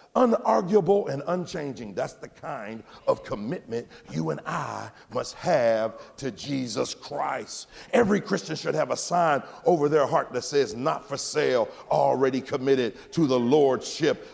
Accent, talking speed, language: American, 145 wpm, English